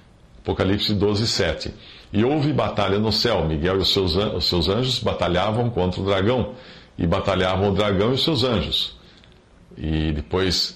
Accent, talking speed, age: Brazilian, 150 wpm, 50-69